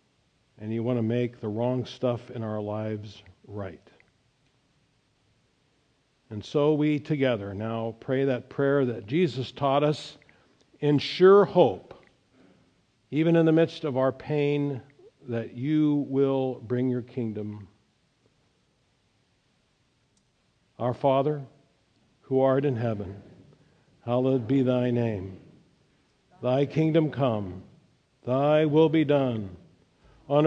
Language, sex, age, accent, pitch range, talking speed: English, male, 50-69, American, 125-160 Hz, 110 wpm